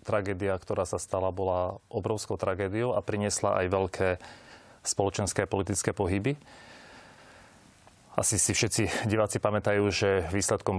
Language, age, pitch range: Slovak, 30-49, 95-105 Hz